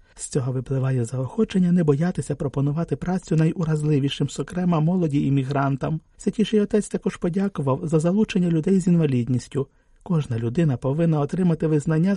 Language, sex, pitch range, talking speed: Ukrainian, male, 135-175 Hz, 130 wpm